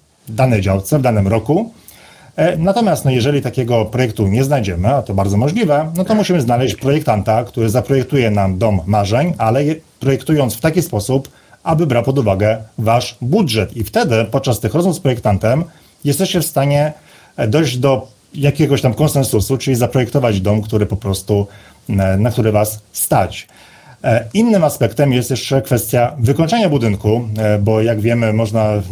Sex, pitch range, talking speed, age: male, 110-145 Hz, 150 wpm, 40-59